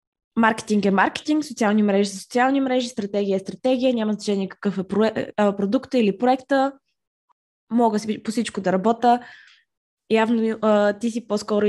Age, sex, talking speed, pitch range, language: 20-39, female, 150 wpm, 190-225 Hz, Bulgarian